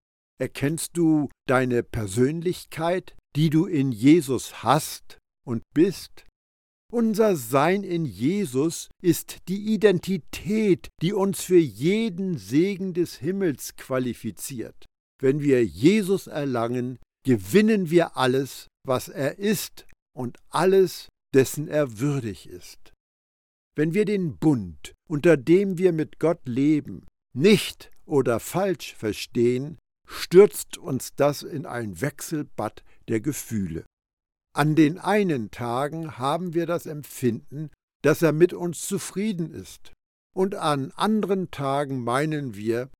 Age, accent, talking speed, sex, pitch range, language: 60-79, German, 115 wpm, male, 125-175 Hz, German